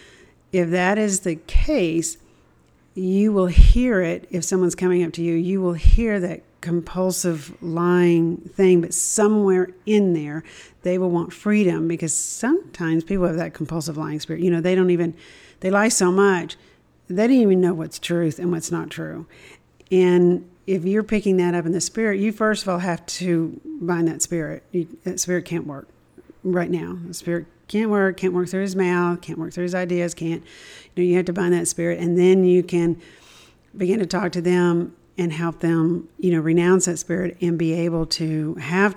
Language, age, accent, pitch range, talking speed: English, 50-69, American, 165-185 Hz, 195 wpm